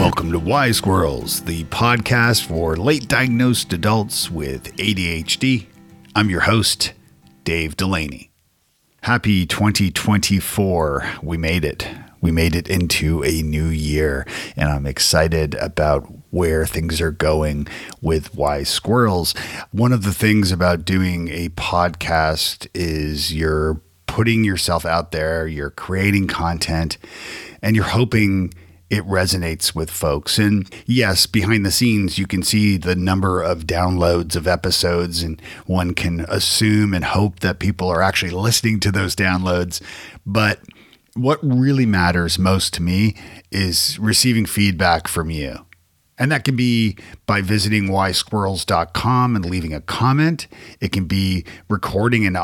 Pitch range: 85-105 Hz